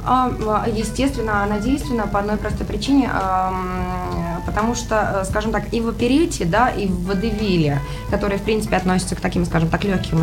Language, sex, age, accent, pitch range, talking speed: Russian, female, 20-39, native, 155-195 Hz, 170 wpm